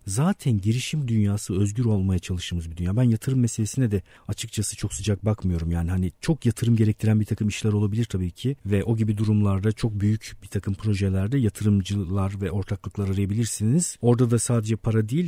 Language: Turkish